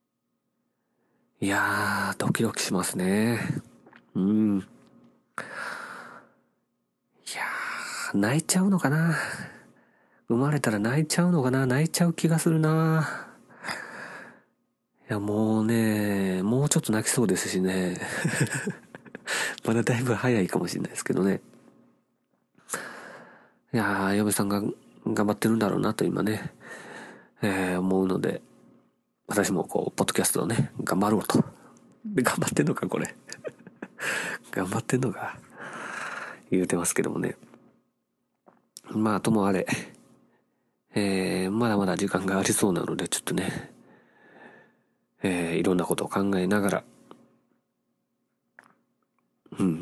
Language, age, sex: Japanese, 40-59, male